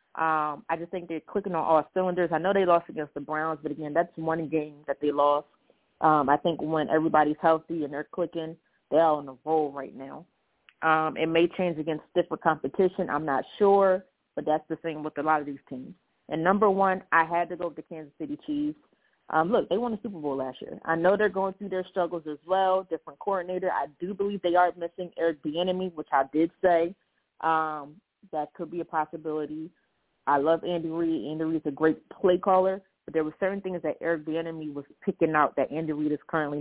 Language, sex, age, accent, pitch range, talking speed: English, female, 30-49, American, 150-185 Hz, 225 wpm